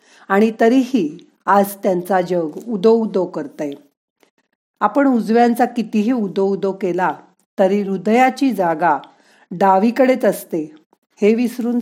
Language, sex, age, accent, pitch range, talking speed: Marathi, female, 50-69, native, 175-235 Hz, 110 wpm